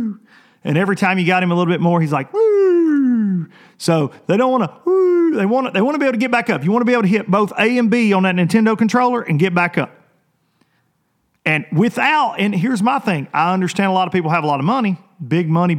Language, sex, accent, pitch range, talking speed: English, male, American, 145-210 Hz, 250 wpm